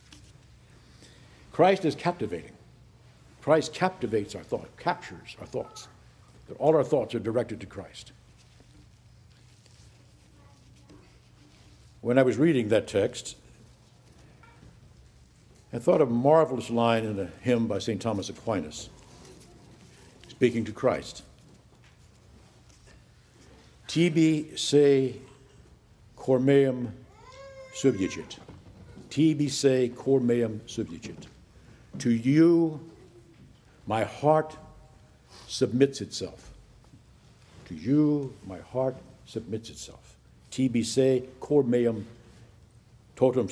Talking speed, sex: 90 wpm, male